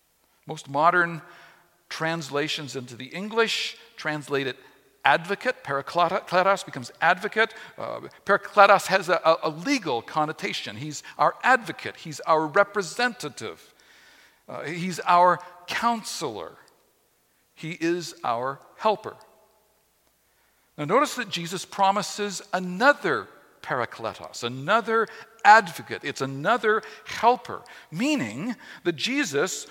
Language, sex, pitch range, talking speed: English, male, 155-220 Hz, 95 wpm